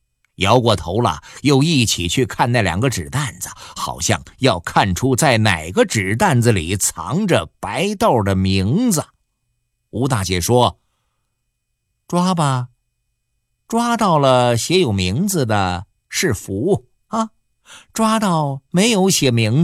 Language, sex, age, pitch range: Chinese, male, 50-69, 100-155 Hz